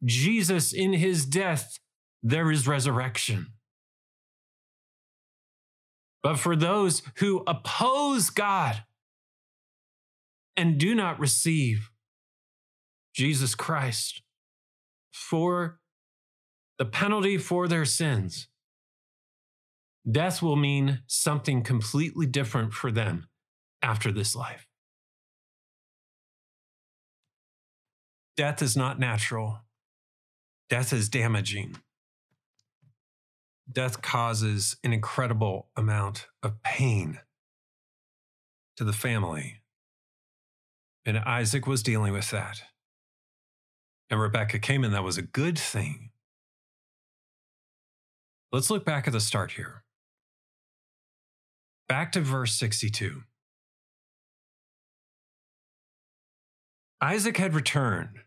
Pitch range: 110-150 Hz